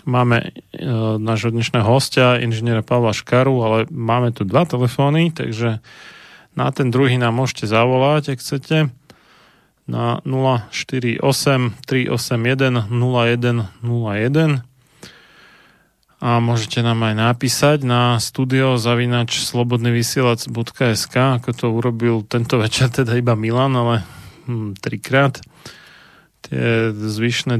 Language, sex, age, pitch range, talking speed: Slovak, male, 30-49, 115-125 Hz, 100 wpm